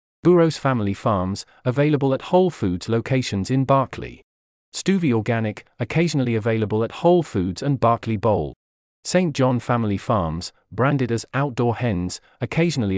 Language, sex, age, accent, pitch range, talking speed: English, male, 40-59, British, 105-140 Hz, 135 wpm